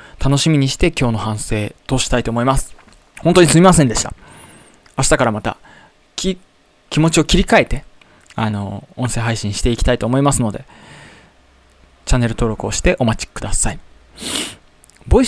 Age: 20-39